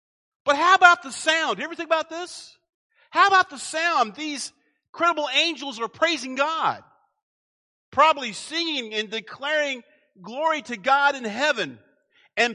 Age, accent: 50-69, American